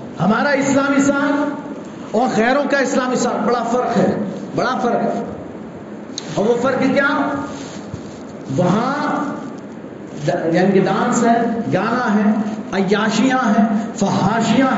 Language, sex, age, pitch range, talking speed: Urdu, male, 50-69, 210-260 Hz, 115 wpm